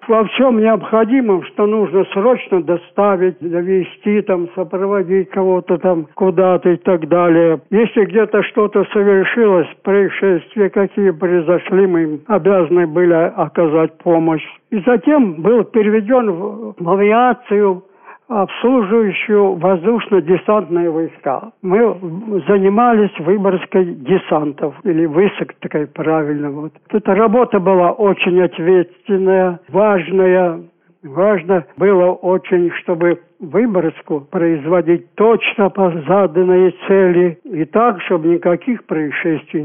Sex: male